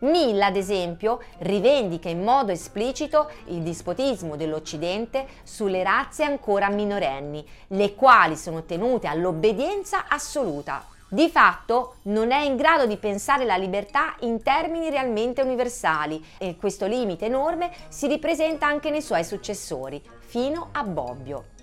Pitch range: 180-270 Hz